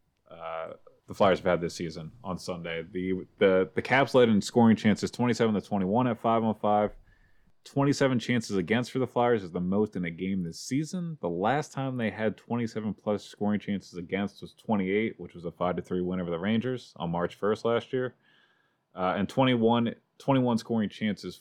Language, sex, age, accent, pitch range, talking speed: English, male, 30-49, American, 90-115 Hz, 190 wpm